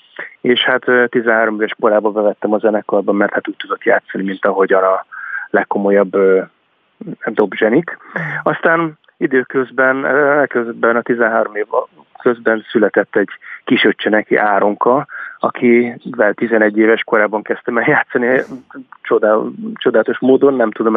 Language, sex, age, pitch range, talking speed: Hungarian, male, 30-49, 105-130 Hz, 125 wpm